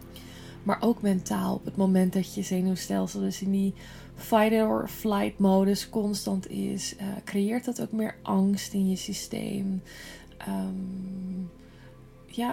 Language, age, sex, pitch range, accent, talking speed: Dutch, 20-39, female, 175-200 Hz, Dutch, 115 wpm